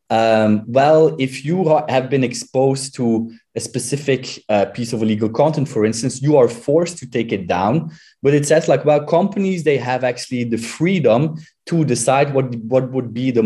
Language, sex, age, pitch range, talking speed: English, male, 20-39, 115-135 Hz, 190 wpm